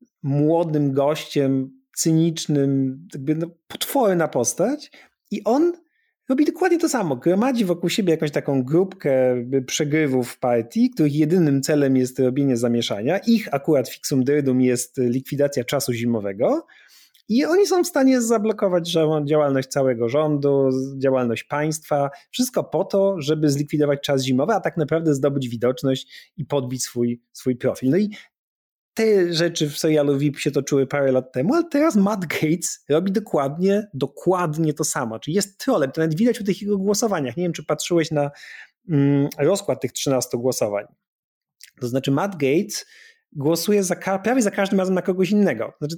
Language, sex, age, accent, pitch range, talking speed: Polish, male, 30-49, native, 135-195 Hz, 155 wpm